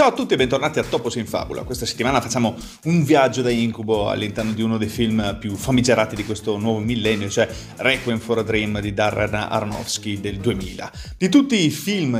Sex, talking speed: male, 200 wpm